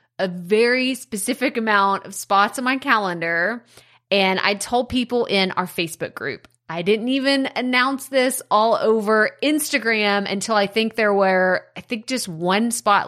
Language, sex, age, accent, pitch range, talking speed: English, female, 30-49, American, 185-240 Hz, 160 wpm